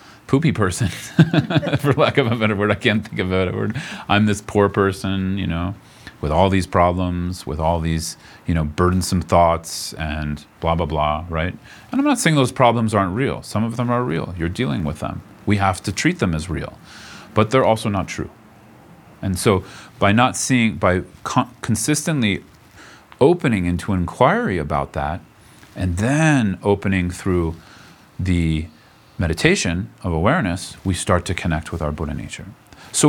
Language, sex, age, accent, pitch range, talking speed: English, male, 40-59, American, 85-115 Hz, 170 wpm